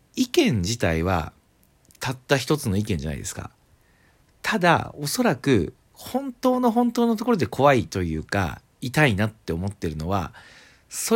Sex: male